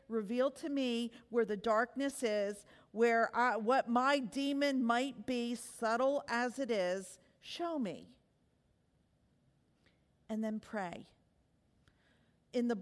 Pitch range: 230-290 Hz